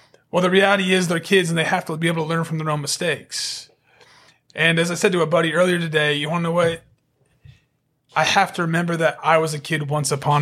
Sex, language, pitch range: male, English, 150-170 Hz